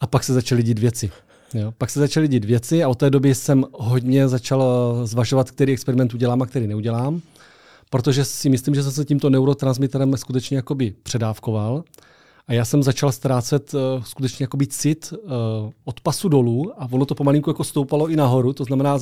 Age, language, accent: 30-49, Czech, native